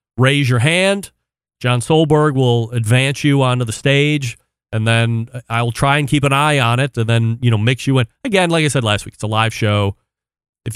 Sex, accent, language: male, American, English